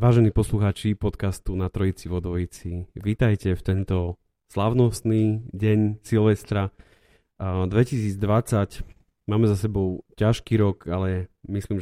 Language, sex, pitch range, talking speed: Slovak, male, 100-115 Hz, 100 wpm